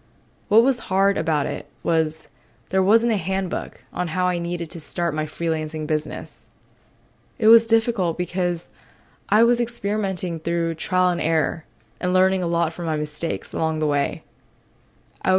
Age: 20-39